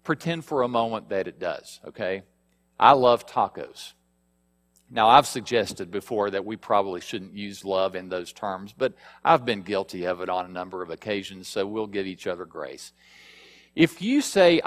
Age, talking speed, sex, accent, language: 50-69, 180 wpm, male, American, English